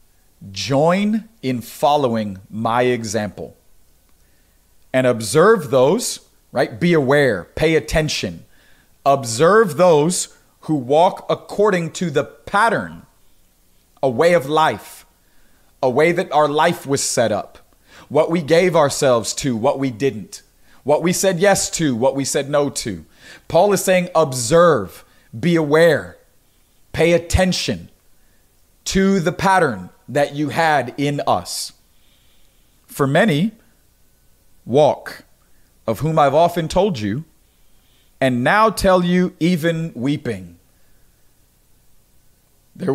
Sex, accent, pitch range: male, American, 120-165 Hz